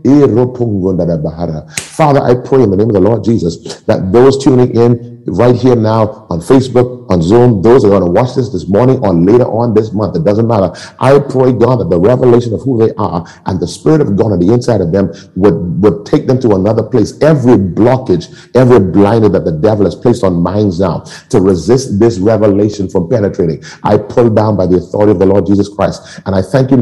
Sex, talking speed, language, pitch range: male, 220 wpm, English, 105-135 Hz